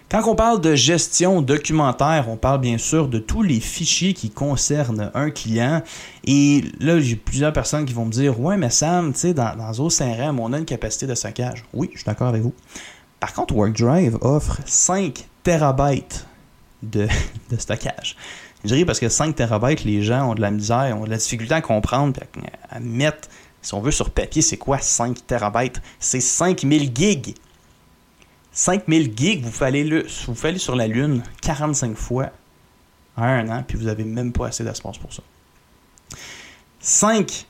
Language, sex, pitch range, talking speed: French, male, 110-150 Hz, 175 wpm